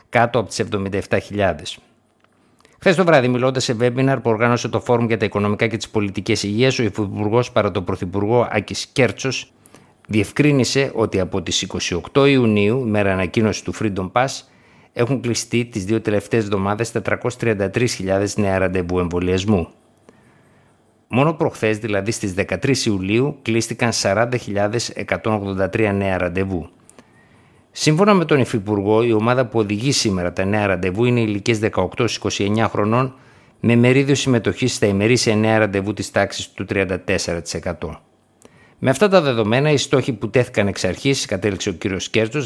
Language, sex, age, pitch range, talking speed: Greek, male, 50-69, 100-125 Hz, 140 wpm